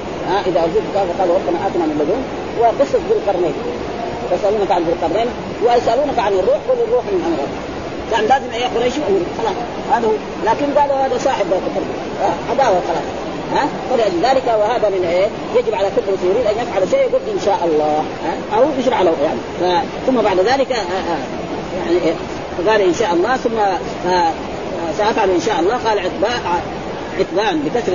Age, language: 30-49, Arabic